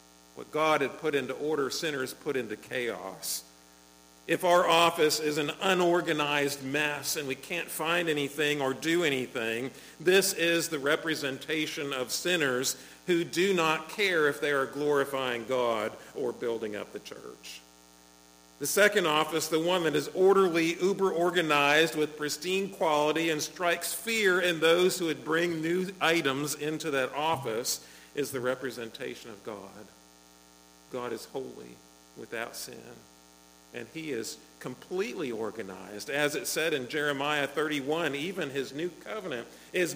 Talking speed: 145 wpm